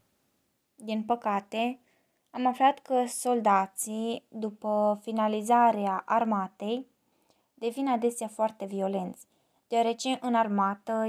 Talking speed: 85 wpm